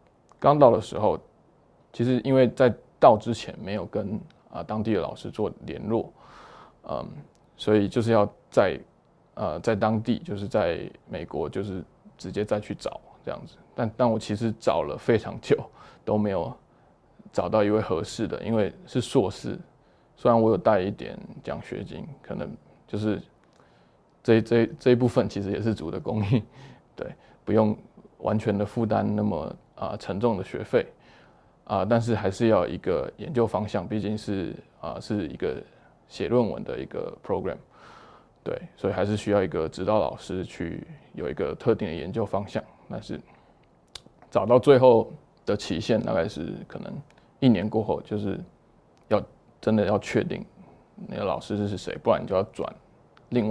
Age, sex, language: 20-39, male, Chinese